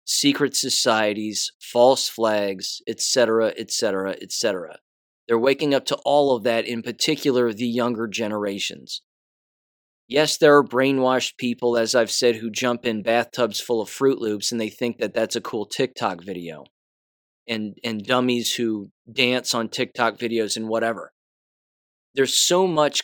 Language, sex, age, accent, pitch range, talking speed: English, male, 20-39, American, 110-130 Hz, 150 wpm